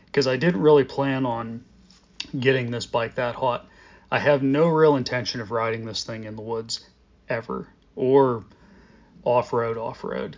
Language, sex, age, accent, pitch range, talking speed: English, male, 30-49, American, 115-145 Hz, 155 wpm